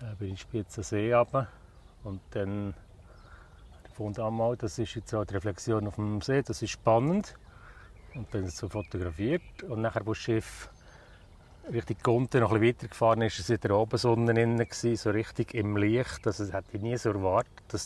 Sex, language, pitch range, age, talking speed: male, German, 95-115 Hz, 40-59, 190 wpm